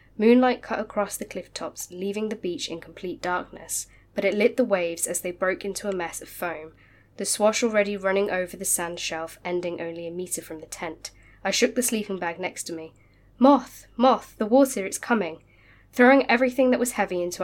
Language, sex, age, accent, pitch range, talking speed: English, female, 10-29, British, 175-220 Hz, 205 wpm